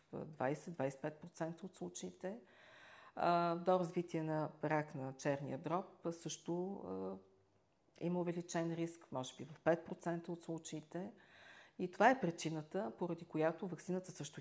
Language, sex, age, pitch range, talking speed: Bulgarian, female, 50-69, 145-180 Hz, 120 wpm